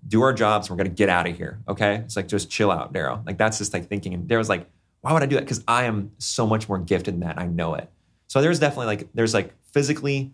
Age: 30-49